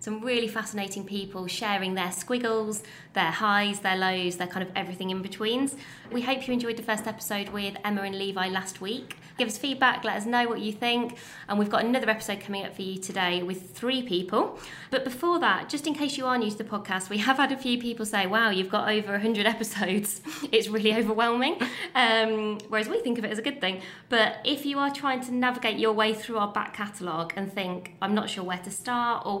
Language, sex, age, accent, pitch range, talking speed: English, female, 20-39, British, 190-235 Hz, 230 wpm